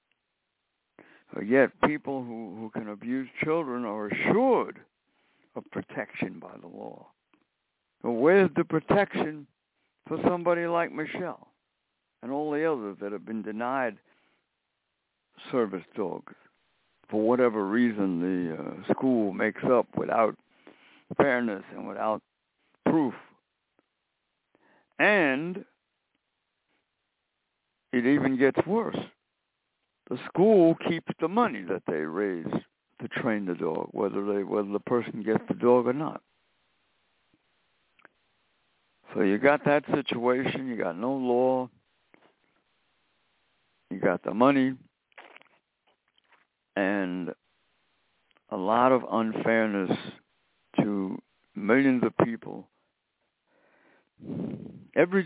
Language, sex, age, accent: English, male, 60-79, American